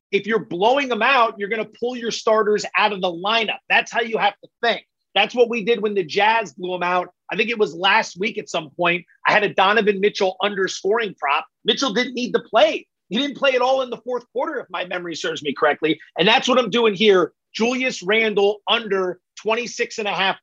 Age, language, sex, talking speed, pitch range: 30-49, English, male, 235 wpm, 190-240 Hz